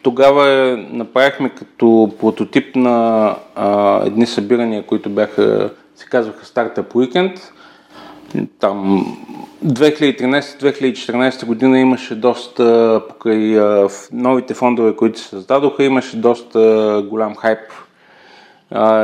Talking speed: 100 wpm